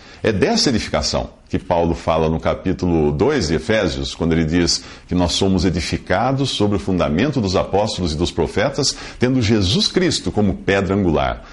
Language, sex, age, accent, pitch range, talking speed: English, male, 50-69, Brazilian, 85-120 Hz, 165 wpm